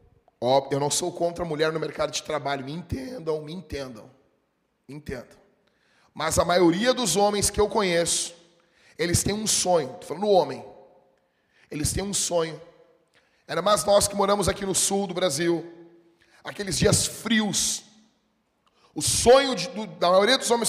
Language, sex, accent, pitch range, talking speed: Portuguese, male, Brazilian, 150-205 Hz, 170 wpm